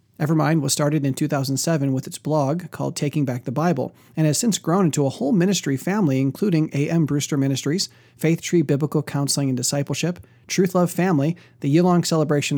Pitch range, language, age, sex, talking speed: 135-170 Hz, English, 40-59, male, 180 wpm